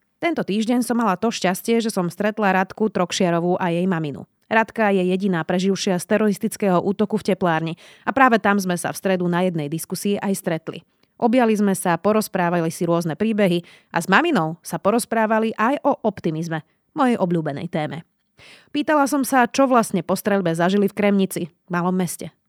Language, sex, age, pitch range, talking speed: Slovak, female, 30-49, 180-230 Hz, 175 wpm